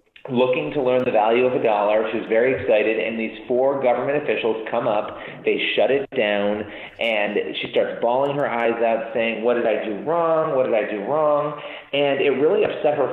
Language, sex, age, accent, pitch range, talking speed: English, male, 40-59, American, 105-130 Hz, 205 wpm